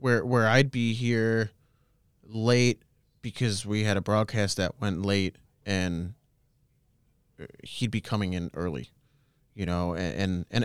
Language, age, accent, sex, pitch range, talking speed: English, 30-49, American, male, 100-135 Hz, 135 wpm